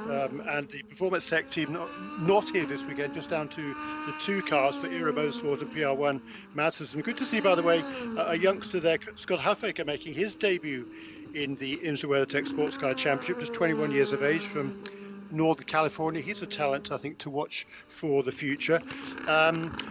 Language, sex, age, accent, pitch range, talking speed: English, male, 50-69, British, 150-205 Hz, 200 wpm